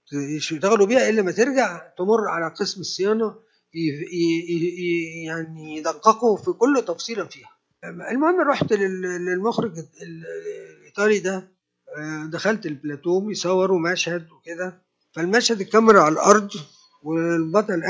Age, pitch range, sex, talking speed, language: 50-69, 165-215 Hz, male, 110 wpm, Arabic